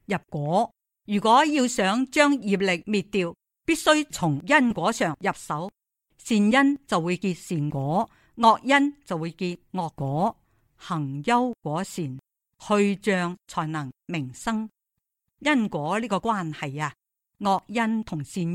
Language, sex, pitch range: Chinese, female, 165-230 Hz